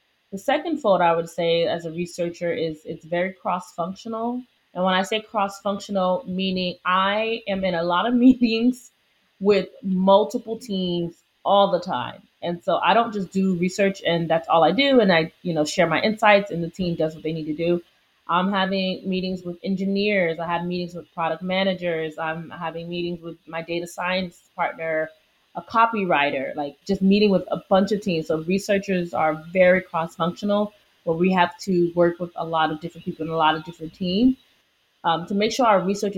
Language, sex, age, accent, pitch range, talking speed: English, female, 30-49, American, 170-210 Hz, 195 wpm